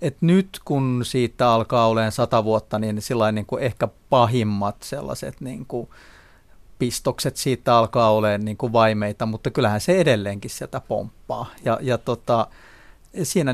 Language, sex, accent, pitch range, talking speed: Finnish, male, native, 110-135 Hz, 145 wpm